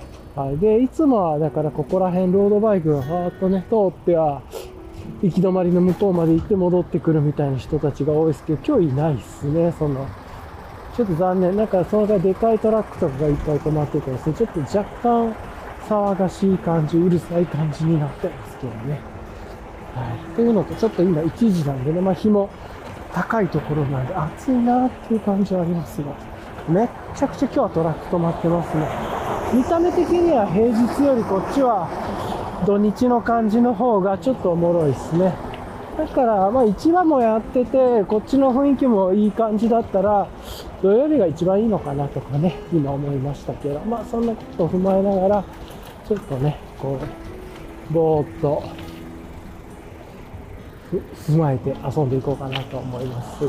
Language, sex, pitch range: Japanese, male, 150-210 Hz